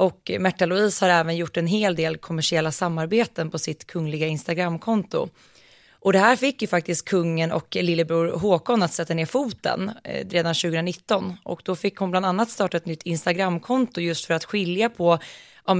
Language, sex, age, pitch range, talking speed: Swedish, female, 20-39, 165-195 Hz, 180 wpm